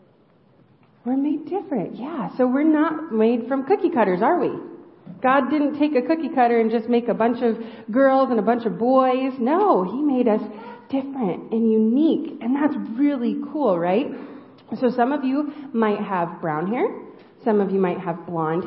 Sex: female